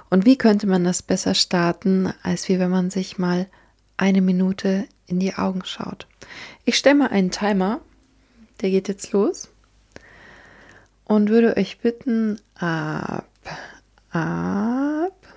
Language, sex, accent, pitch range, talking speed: German, female, German, 175-215 Hz, 135 wpm